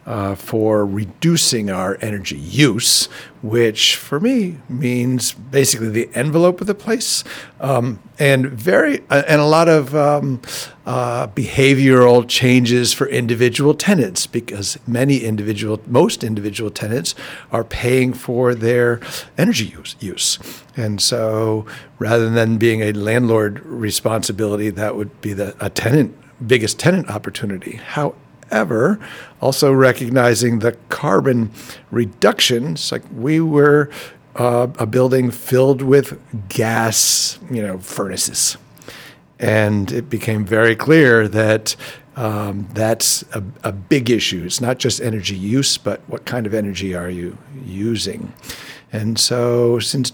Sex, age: male, 50-69